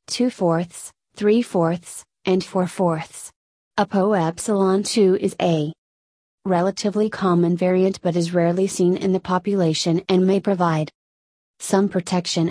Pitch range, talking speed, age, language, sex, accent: 170-200 Hz, 130 wpm, 30-49, English, female, American